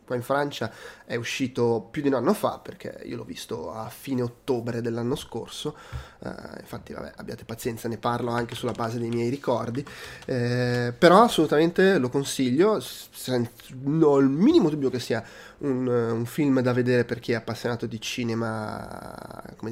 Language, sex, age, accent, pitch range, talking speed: Italian, male, 20-39, native, 115-135 Hz, 175 wpm